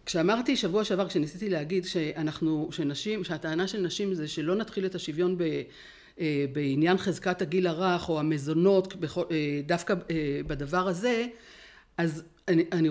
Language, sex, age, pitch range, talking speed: Hebrew, female, 60-79, 175-230 Hz, 125 wpm